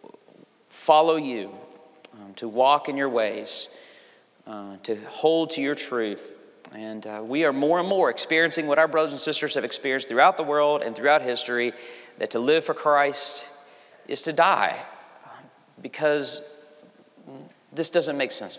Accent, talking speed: American, 155 wpm